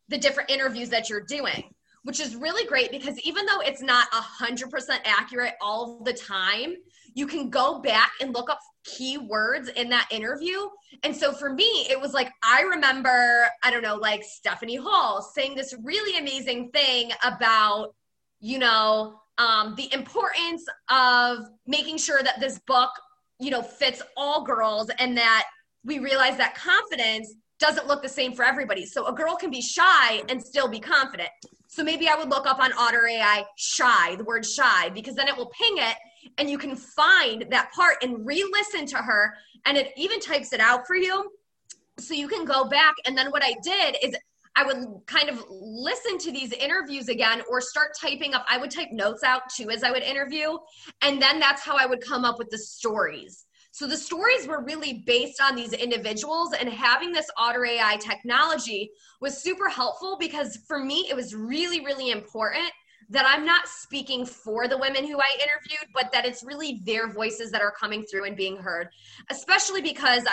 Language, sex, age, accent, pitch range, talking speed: English, female, 20-39, American, 235-300 Hz, 190 wpm